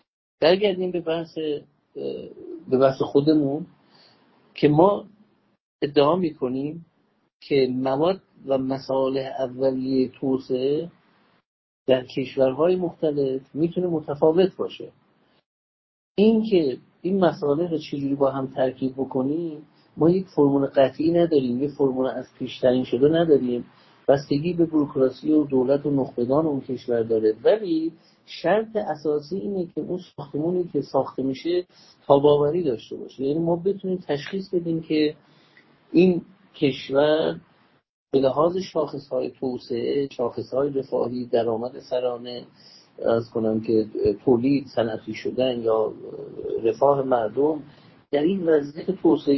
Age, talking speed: 50-69, 115 wpm